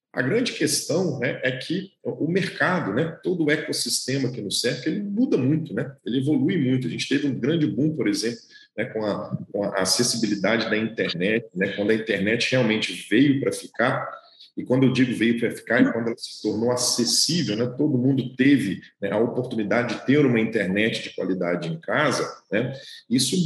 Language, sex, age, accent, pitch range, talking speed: English, male, 40-59, Brazilian, 110-155 Hz, 195 wpm